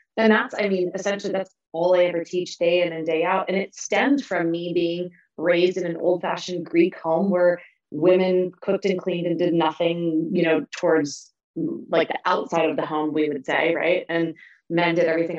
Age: 30-49